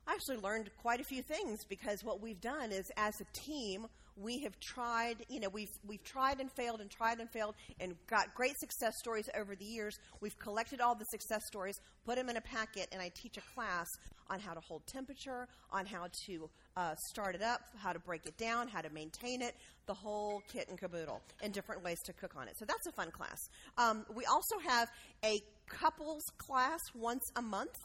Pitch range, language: 195-240 Hz, English